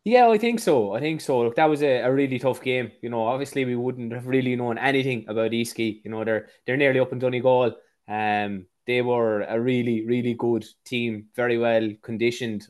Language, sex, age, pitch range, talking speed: English, male, 20-39, 115-130 Hz, 215 wpm